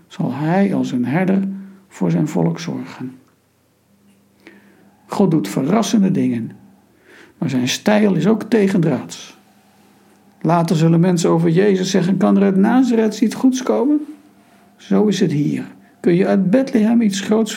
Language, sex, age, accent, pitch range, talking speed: Dutch, male, 60-79, Dutch, 155-210 Hz, 145 wpm